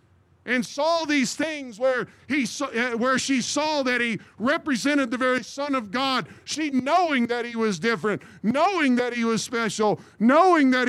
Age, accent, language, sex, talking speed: 50-69, American, English, male, 165 wpm